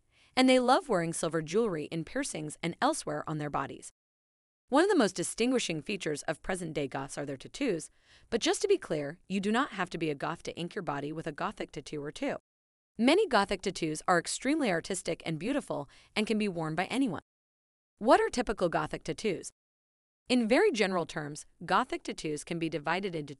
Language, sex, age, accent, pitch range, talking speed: English, female, 30-49, American, 155-235 Hz, 195 wpm